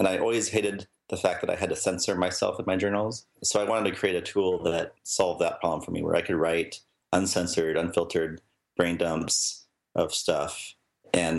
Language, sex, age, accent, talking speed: English, male, 30-49, American, 205 wpm